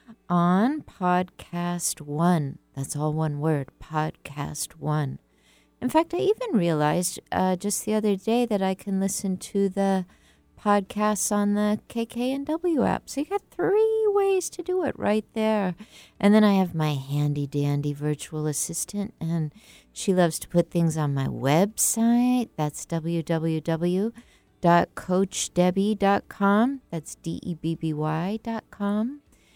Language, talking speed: English, 125 wpm